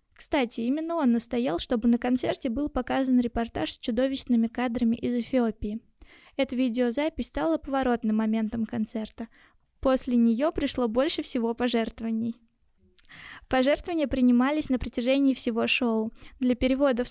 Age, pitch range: 20-39, 235-270 Hz